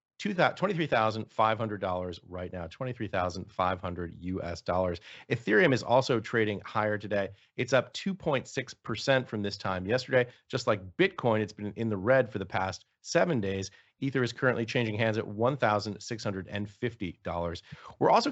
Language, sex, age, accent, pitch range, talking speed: English, male, 40-59, American, 100-125 Hz, 135 wpm